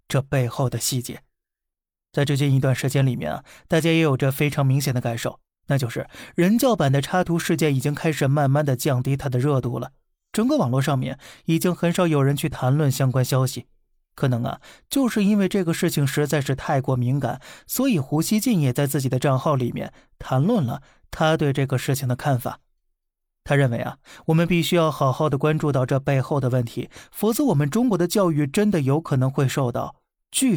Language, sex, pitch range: Chinese, male, 130-160 Hz